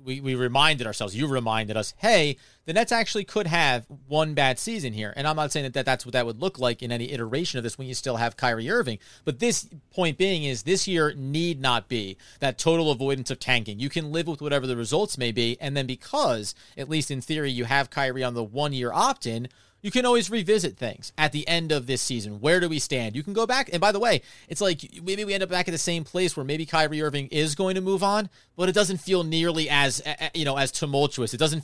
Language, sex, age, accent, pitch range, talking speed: English, male, 30-49, American, 130-180 Hz, 250 wpm